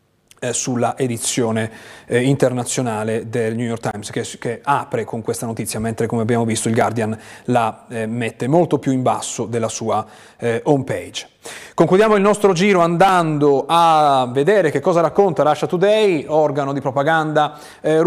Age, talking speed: 30-49, 165 wpm